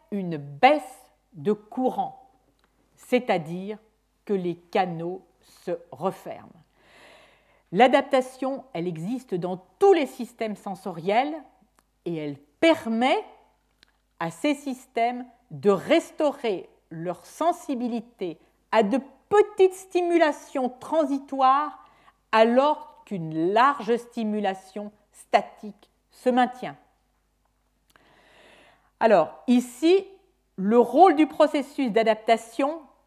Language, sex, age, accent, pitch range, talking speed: French, female, 50-69, French, 190-285 Hz, 85 wpm